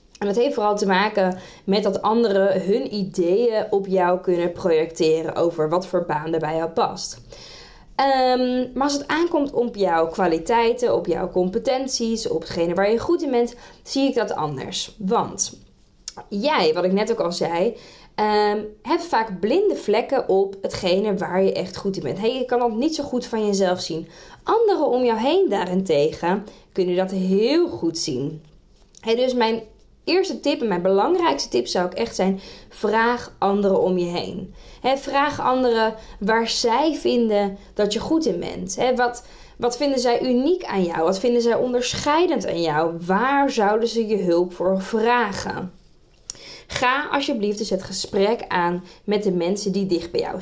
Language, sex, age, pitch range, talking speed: Dutch, female, 20-39, 185-250 Hz, 175 wpm